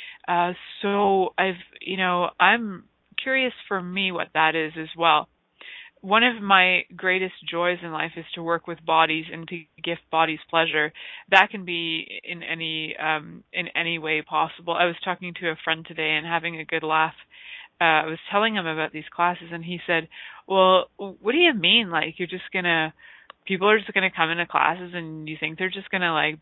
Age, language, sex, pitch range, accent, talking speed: 20-39, English, female, 160-190 Hz, American, 200 wpm